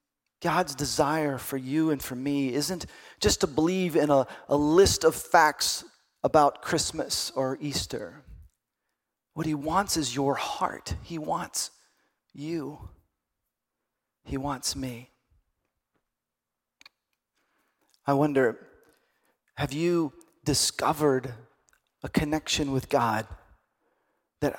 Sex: male